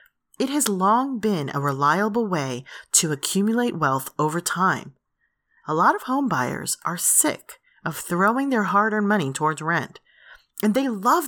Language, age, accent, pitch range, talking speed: English, 30-49, American, 165-240 Hz, 155 wpm